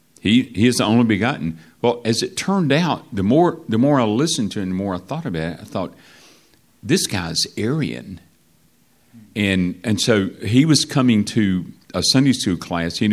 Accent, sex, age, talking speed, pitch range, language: American, male, 50-69, 195 wpm, 85-120 Hz, English